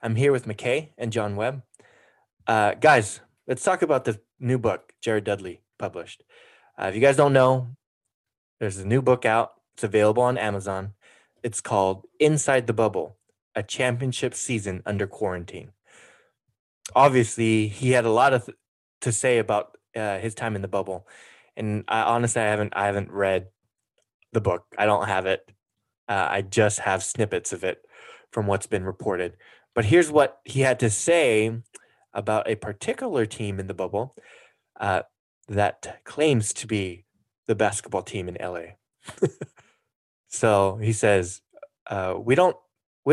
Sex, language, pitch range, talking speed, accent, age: male, English, 100-125 Hz, 160 wpm, American, 20-39